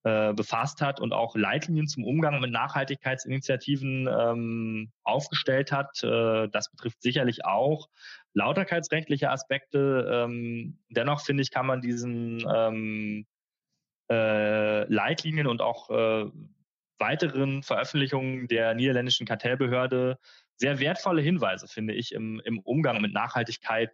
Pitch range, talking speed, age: 115-140 Hz, 115 wpm, 20-39